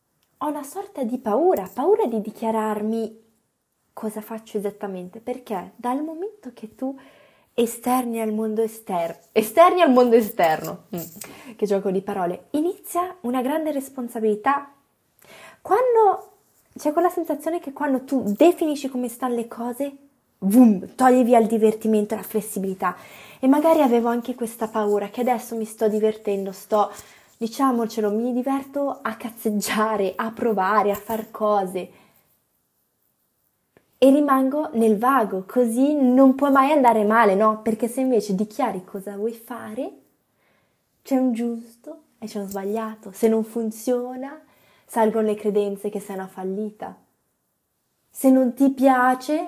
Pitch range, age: 210-265 Hz, 20-39